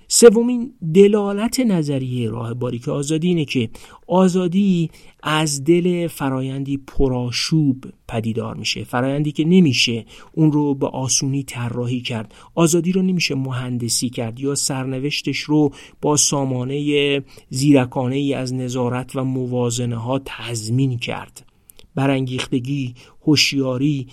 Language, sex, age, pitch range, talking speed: Persian, male, 50-69, 130-165 Hz, 110 wpm